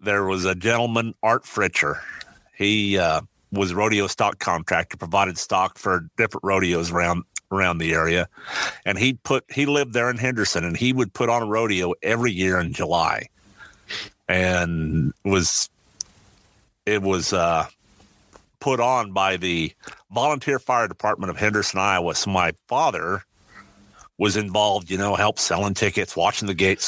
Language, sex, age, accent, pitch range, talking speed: English, male, 50-69, American, 95-115 Hz, 150 wpm